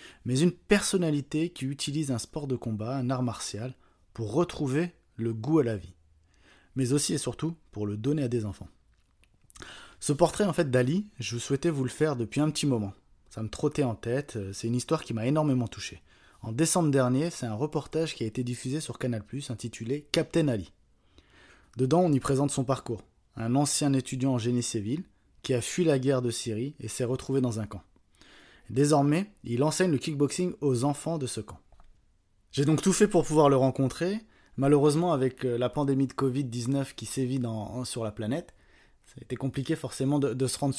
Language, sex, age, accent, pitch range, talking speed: French, male, 20-39, French, 115-145 Hz, 195 wpm